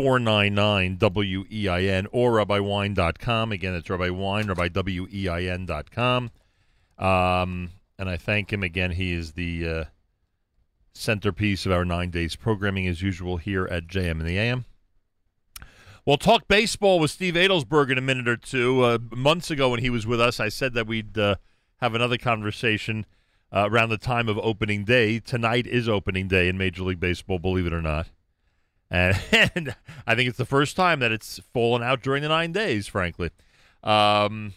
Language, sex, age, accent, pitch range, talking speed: English, male, 40-59, American, 95-120 Hz, 165 wpm